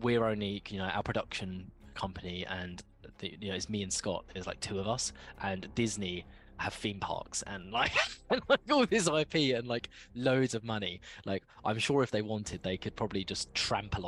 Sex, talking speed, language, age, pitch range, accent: male, 195 wpm, English, 20-39, 95-110 Hz, British